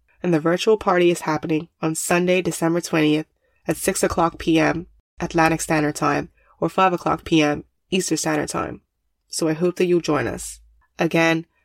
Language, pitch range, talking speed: English, 160-180 Hz, 165 wpm